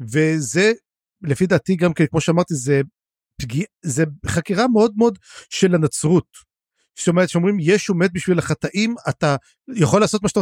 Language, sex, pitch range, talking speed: Hebrew, male, 155-215 Hz, 155 wpm